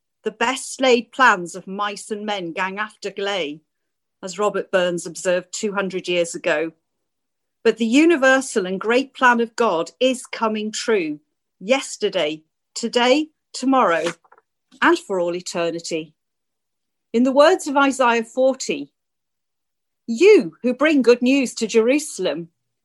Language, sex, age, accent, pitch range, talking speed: English, female, 40-59, British, 190-285 Hz, 130 wpm